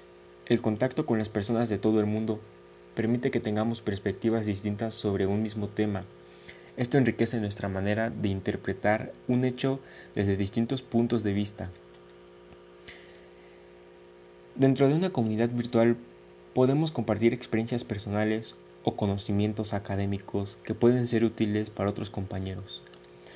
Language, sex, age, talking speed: Spanish, male, 20-39, 130 wpm